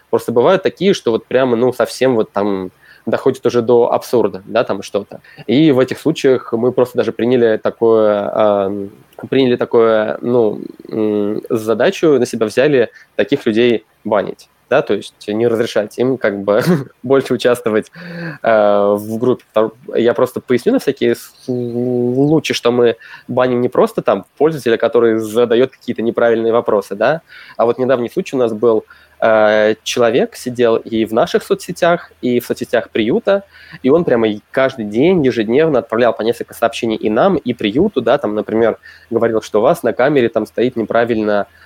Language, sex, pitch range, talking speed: Russian, male, 105-125 Hz, 160 wpm